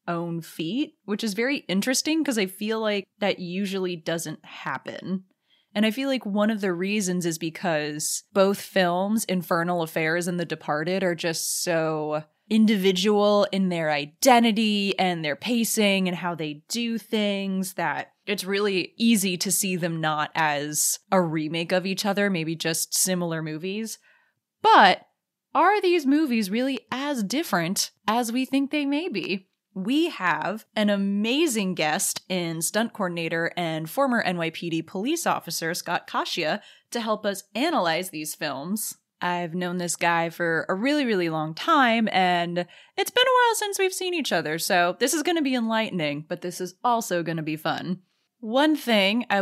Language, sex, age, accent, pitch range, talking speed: English, female, 20-39, American, 170-225 Hz, 165 wpm